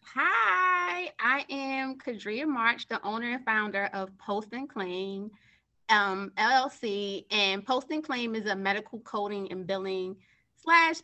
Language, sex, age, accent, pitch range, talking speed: English, female, 20-39, American, 215-275 Hz, 140 wpm